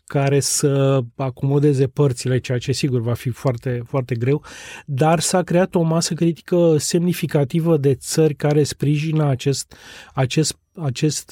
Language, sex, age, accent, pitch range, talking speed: Romanian, male, 30-49, native, 140-165 Hz, 140 wpm